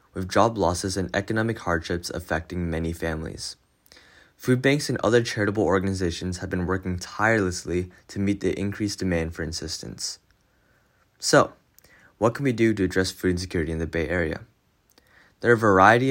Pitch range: 85-105 Hz